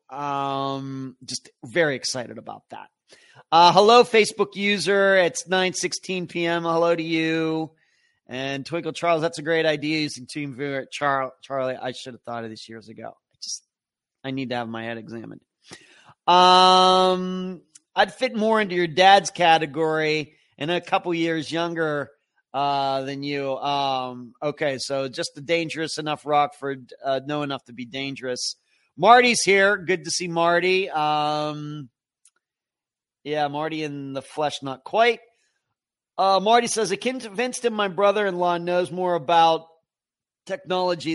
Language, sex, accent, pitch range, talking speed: English, male, American, 140-180 Hz, 145 wpm